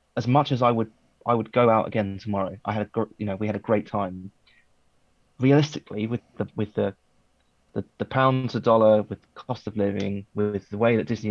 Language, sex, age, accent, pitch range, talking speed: English, male, 20-39, British, 100-115 Hz, 210 wpm